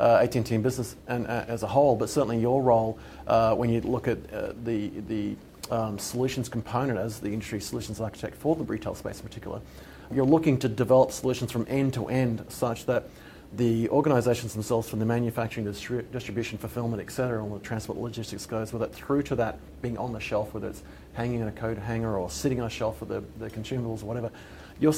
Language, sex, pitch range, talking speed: English, male, 110-120 Hz, 220 wpm